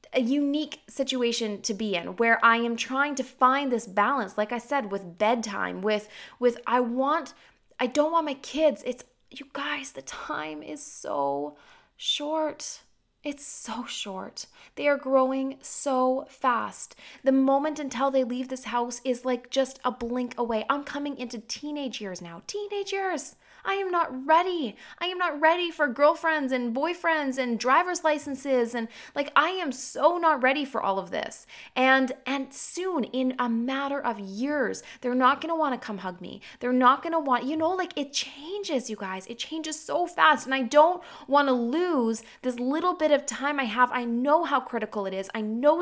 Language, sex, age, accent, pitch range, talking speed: English, female, 20-39, American, 220-290 Hz, 190 wpm